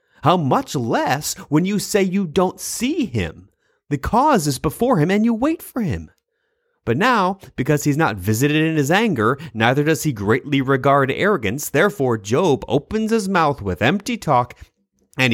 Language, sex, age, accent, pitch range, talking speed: English, male, 30-49, American, 110-165 Hz, 170 wpm